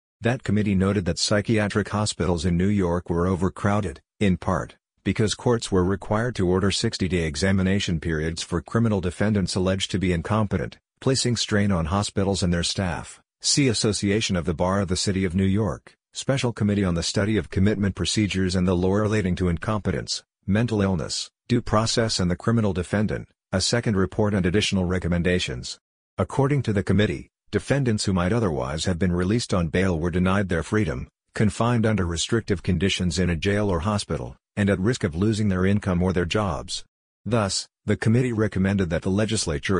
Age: 50-69